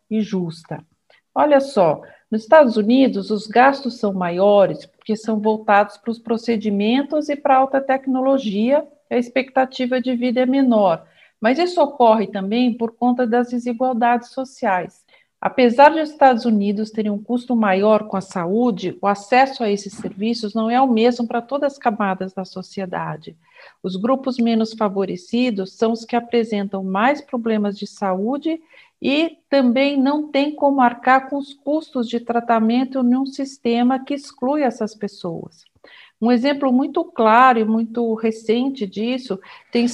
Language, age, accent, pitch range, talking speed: Portuguese, 50-69, Brazilian, 210-265 Hz, 150 wpm